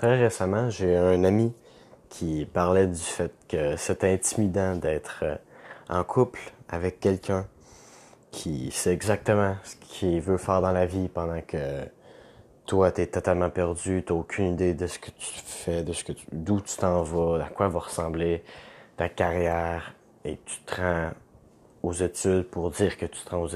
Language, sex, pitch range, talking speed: French, male, 85-105 Hz, 175 wpm